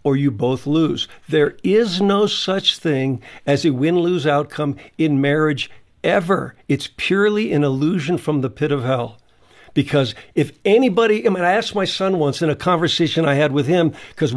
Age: 50-69